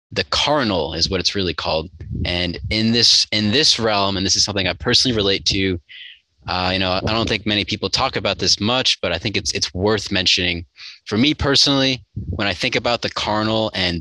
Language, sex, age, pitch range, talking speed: English, male, 20-39, 90-110 Hz, 215 wpm